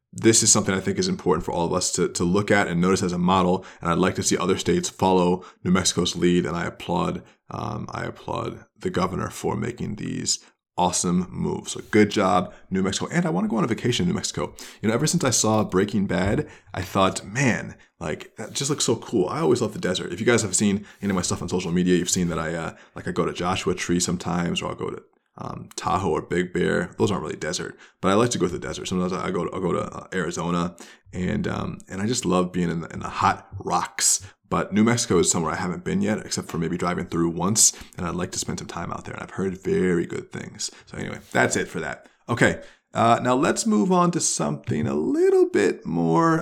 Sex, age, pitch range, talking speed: male, 20-39, 90-120 Hz, 250 wpm